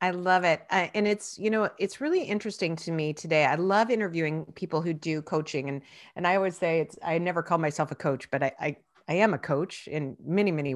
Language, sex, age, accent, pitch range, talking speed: English, female, 40-59, American, 155-210 Hz, 240 wpm